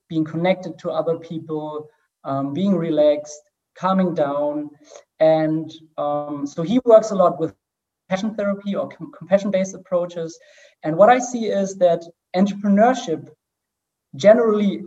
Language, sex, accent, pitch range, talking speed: English, male, German, 155-195 Hz, 135 wpm